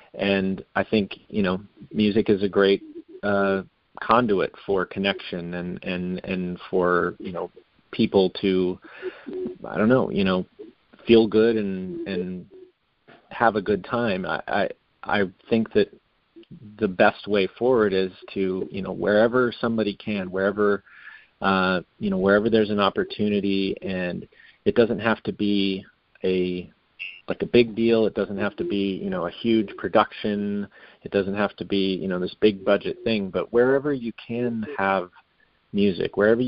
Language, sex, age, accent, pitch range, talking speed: English, male, 40-59, American, 95-115 Hz, 160 wpm